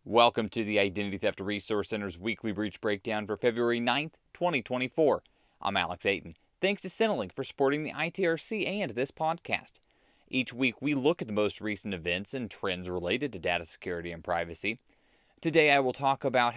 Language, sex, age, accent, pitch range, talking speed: English, male, 30-49, American, 110-155 Hz, 180 wpm